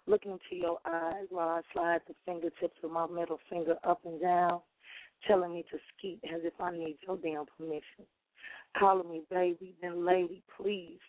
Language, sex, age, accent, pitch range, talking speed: English, female, 30-49, American, 165-185 Hz, 180 wpm